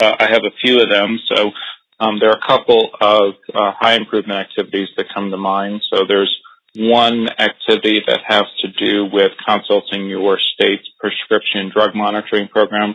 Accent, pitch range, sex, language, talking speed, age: American, 95-105 Hz, male, English, 170 wpm, 30-49